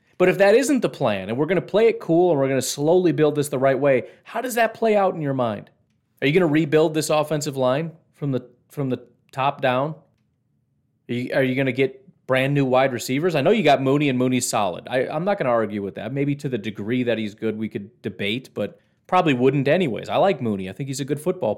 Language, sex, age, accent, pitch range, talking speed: English, male, 30-49, American, 130-175 Hz, 265 wpm